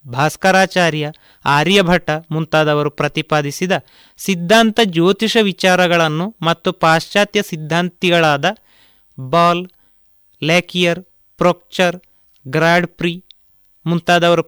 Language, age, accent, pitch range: Kannada, 30-49, native, 155-195 Hz